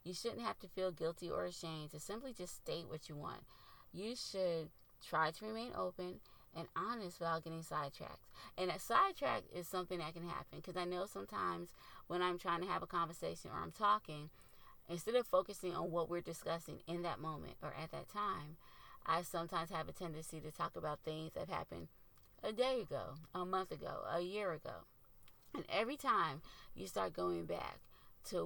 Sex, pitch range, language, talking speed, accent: female, 160-185 Hz, English, 190 wpm, American